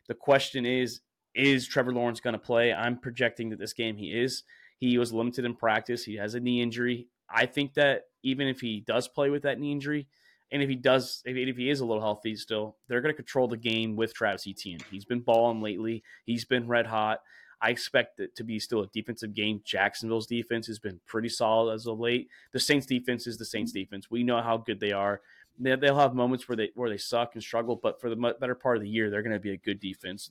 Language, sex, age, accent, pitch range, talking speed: English, male, 20-39, American, 110-130 Hz, 245 wpm